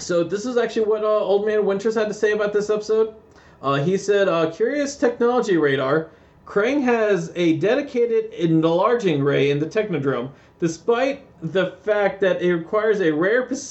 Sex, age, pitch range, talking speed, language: male, 40-59, 160-225 Hz, 170 wpm, English